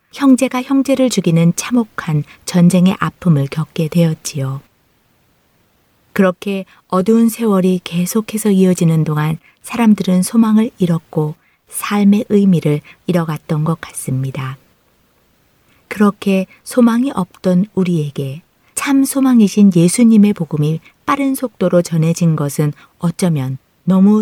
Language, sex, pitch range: Korean, female, 155-215 Hz